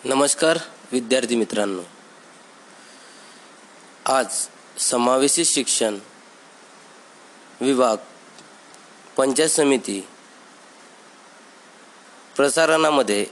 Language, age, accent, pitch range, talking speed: Marathi, 20-39, native, 120-140 Hz, 45 wpm